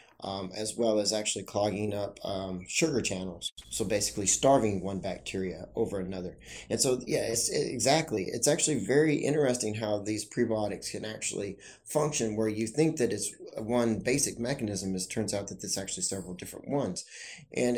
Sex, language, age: male, English, 30-49